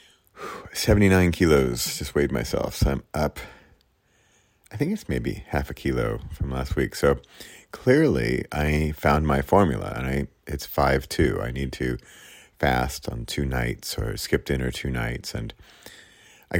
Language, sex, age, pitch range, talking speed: English, male, 40-59, 70-95 Hz, 155 wpm